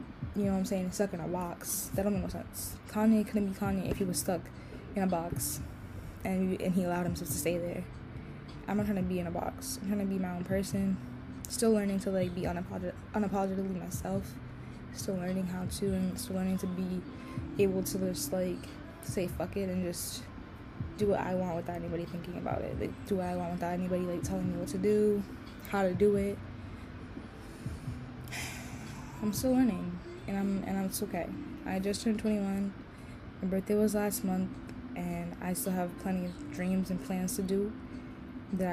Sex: female